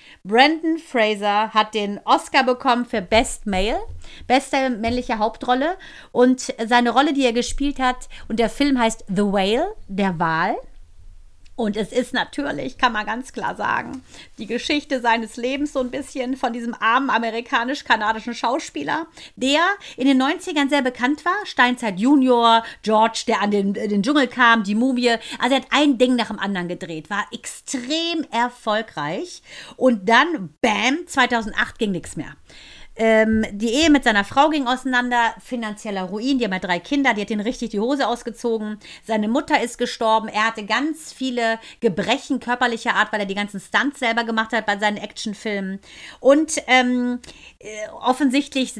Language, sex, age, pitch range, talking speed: German, female, 40-59, 220-265 Hz, 160 wpm